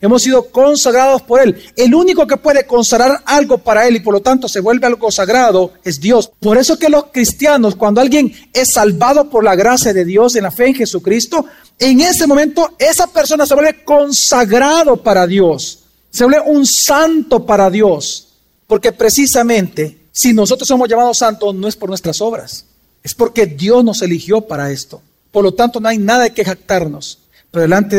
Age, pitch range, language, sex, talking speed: 40-59, 180-245 Hz, Spanish, male, 185 wpm